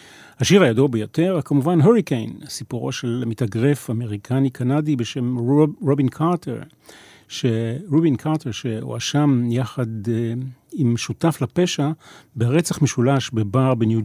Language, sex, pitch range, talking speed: Hebrew, male, 120-155 Hz, 110 wpm